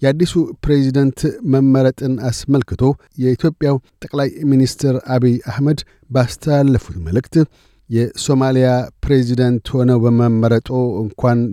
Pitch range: 120-140 Hz